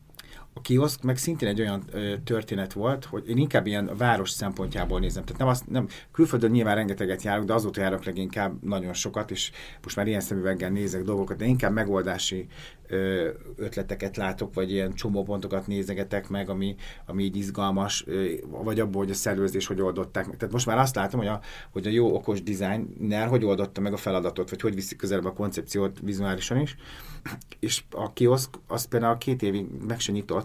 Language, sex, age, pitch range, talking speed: Hungarian, male, 30-49, 95-115 Hz, 180 wpm